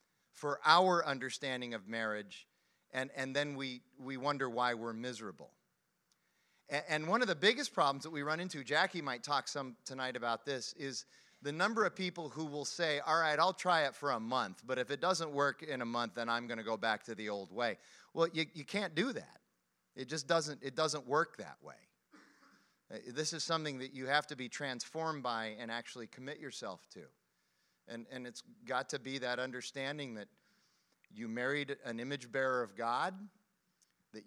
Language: English